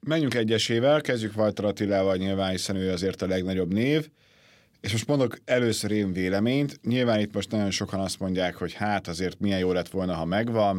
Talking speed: 190 wpm